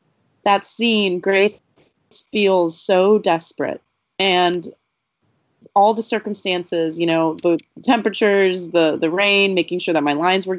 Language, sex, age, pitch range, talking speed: English, female, 20-39, 170-190 Hz, 130 wpm